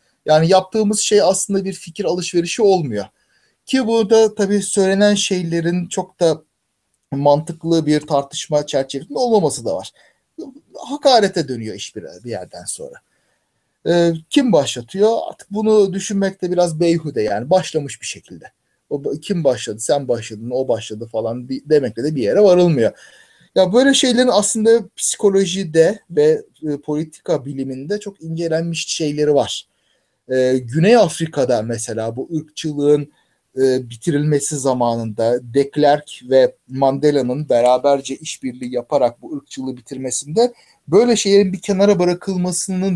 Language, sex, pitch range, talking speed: Turkish, male, 135-195 Hz, 125 wpm